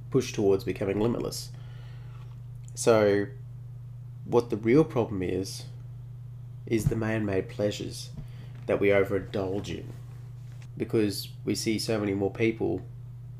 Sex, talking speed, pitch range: male, 115 wpm, 105-120 Hz